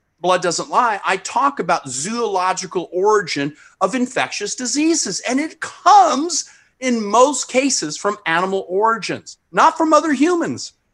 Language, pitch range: English, 160-225 Hz